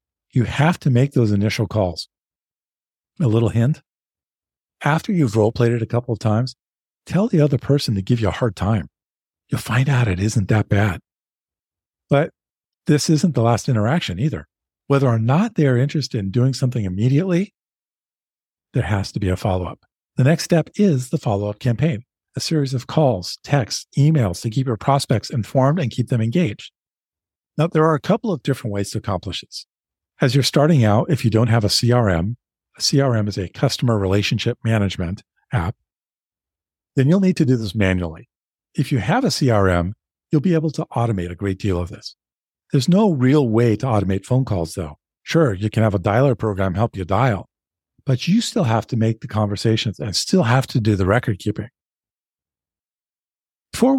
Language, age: English, 50-69